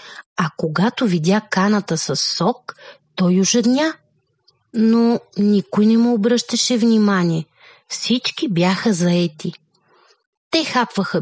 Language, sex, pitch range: Bulgarian, female, 175-245 Hz